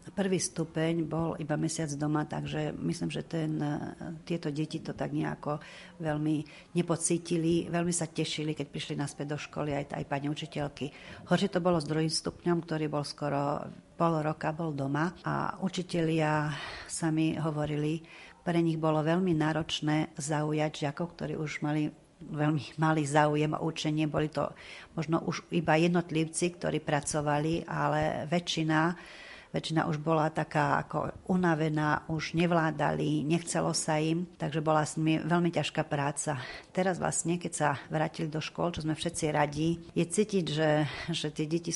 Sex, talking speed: female, 155 wpm